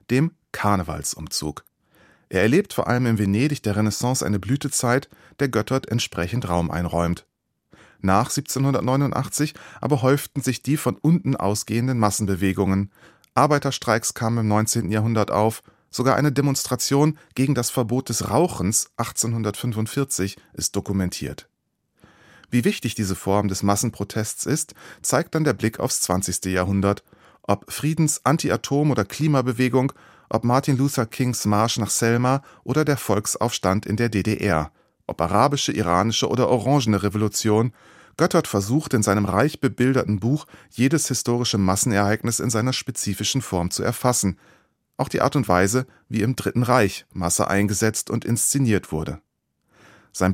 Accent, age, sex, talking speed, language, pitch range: German, 30-49, male, 135 wpm, German, 100-130 Hz